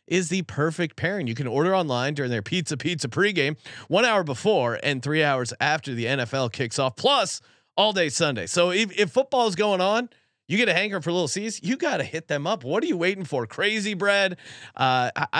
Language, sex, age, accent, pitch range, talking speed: English, male, 30-49, American, 135-185 Hz, 220 wpm